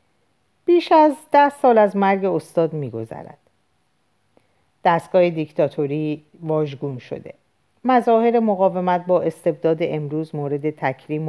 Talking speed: 100 wpm